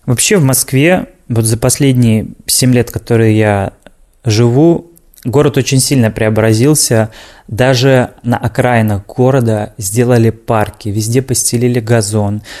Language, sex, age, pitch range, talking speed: Russian, male, 20-39, 110-135 Hz, 115 wpm